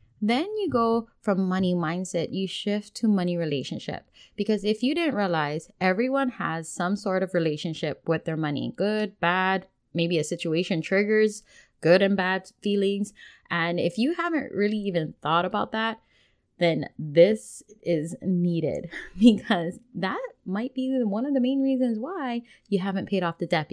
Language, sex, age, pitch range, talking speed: English, female, 20-39, 170-220 Hz, 160 wpm